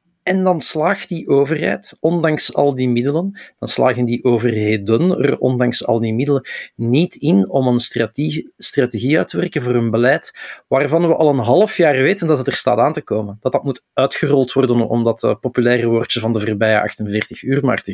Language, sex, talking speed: Dutch, male, 200 wpm